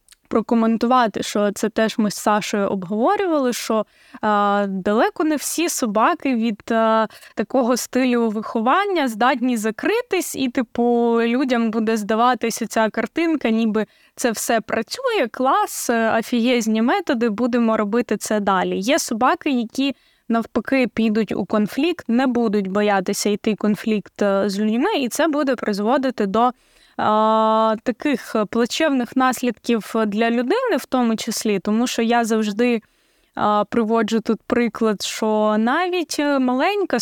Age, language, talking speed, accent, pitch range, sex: 20-39, Ukrainian, 125 wpm, native, 220-265 Hz, female